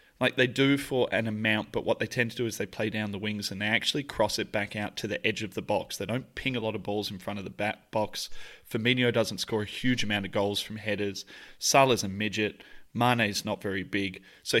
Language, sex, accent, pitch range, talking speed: English, male, Australian, 105-120 Hz, 255 wpm